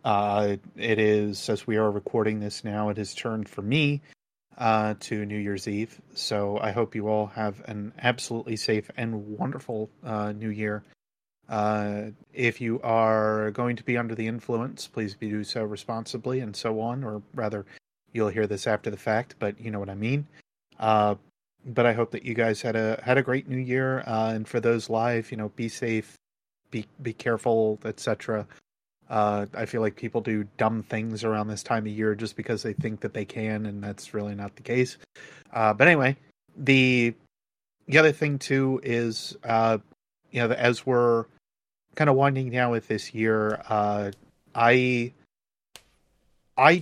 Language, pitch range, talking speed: English, 105-120 Hz, 180 wpm